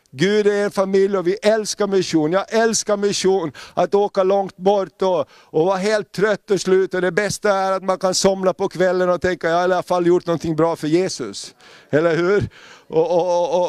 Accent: native